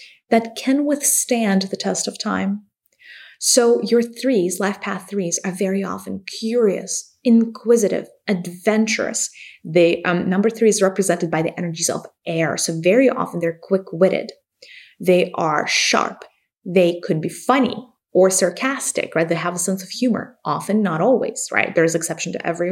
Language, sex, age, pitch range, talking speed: English, female, 20-39, 180-240 Hz, 155 wpm